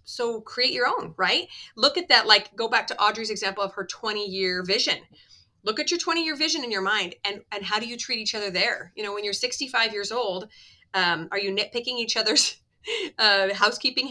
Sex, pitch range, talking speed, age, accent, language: female, 185-225 Hz, 215 wpm, 30-49, American, English